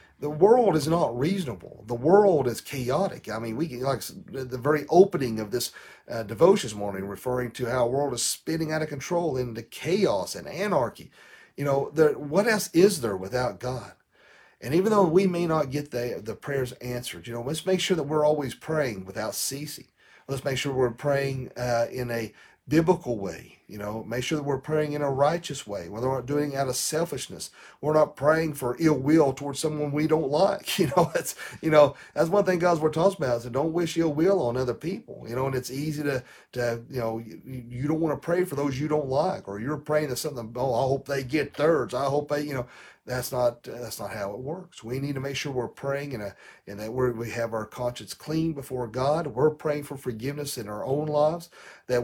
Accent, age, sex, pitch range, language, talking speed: American, 40-59, male, 125-155 Hz, English, 225 wpm